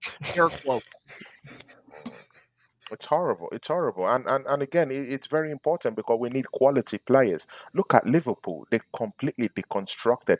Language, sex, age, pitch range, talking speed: English, male, 30-49, 115-150 Hz, 145 wpm